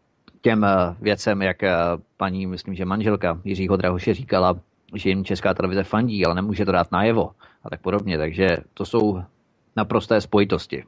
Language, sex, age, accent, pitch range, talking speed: Czech, male, 30-49, native, 95-115 Hz, 155 wpm